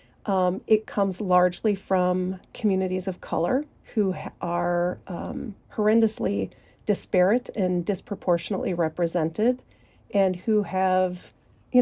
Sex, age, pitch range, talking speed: female, 40-59, 180-220 Hz, 105 wpm